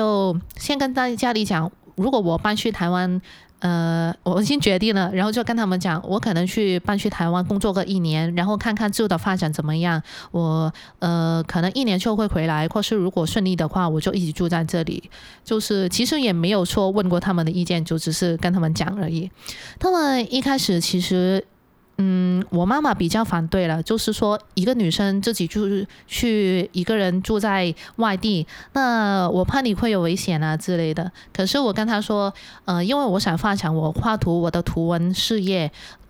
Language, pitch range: Chinese, 170-210 Hz